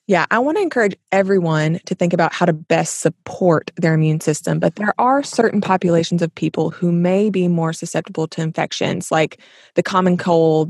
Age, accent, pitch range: 20-39, American, 165-195 Hz